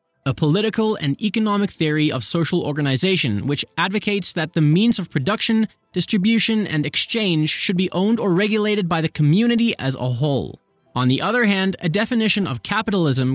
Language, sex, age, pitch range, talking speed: English, male, 20-39, 145-205 Hz, 165 wpm